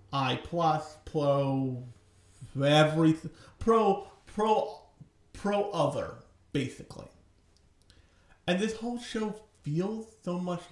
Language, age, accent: English, 40-59, American